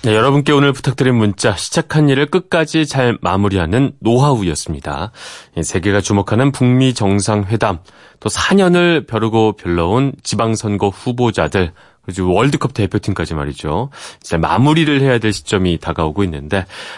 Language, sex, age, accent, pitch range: Korean, male, 30-49, native, 90-130 Hz